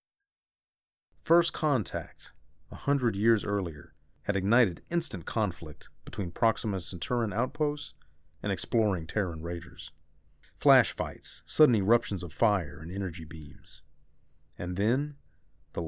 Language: English